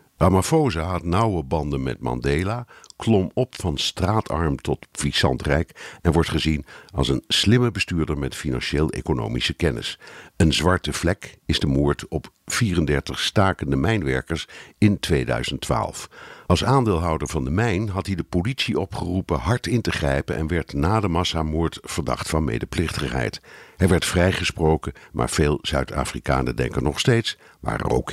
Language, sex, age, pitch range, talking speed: Dutch, male, 60-79, 75-100 Hz, 145 wpm